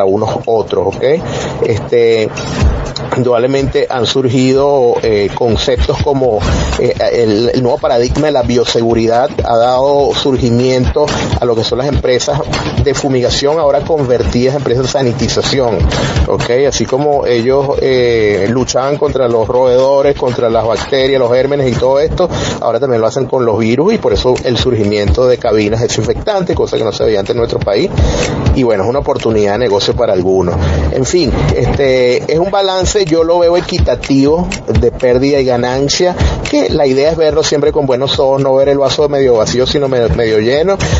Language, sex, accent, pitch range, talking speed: Spanish, male, Venezuelan, 120-150 Hz, 175 wpm